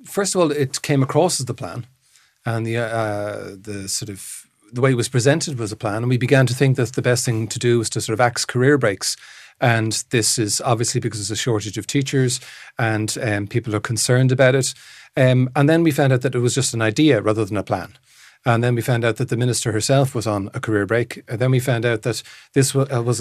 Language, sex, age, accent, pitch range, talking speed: English, male, 40-59, Irish, 110-135 Hz, 250 wpm